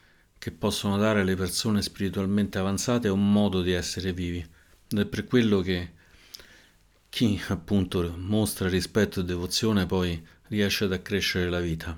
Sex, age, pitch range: male, 50-69, 90-105 Hz